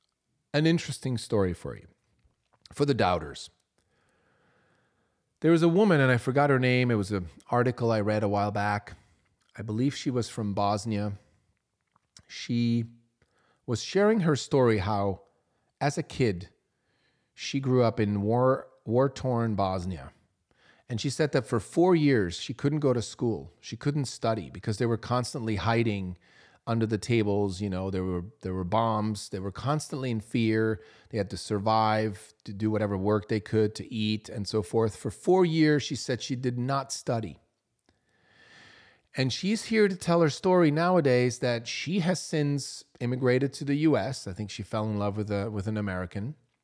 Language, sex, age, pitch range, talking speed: English, male, 40-59, 105-135 Hz, 175 wpm